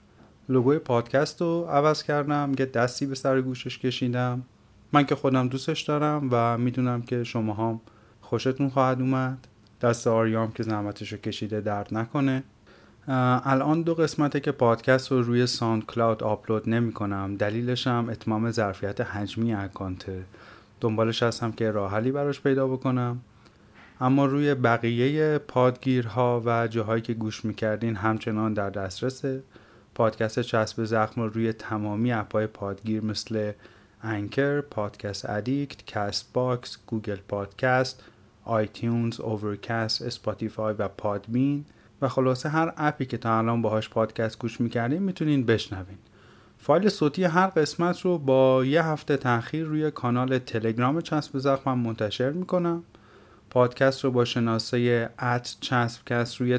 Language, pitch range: Persian, 110-130 Hz